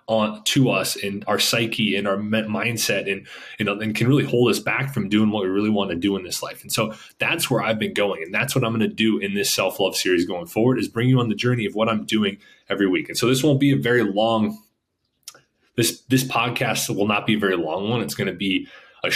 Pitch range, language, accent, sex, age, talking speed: 100-120 Hz, English, American, male, 20-39, 265 wpm